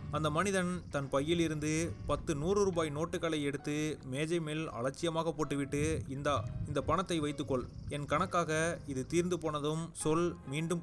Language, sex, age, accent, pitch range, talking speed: Tamil, male, 30-49, native, 140-175 Hz, 140 wpm